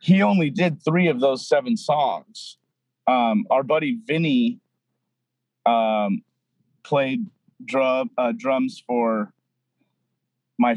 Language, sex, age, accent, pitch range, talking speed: English, male, 30-49, American, 125-190 Hz, 100 wpm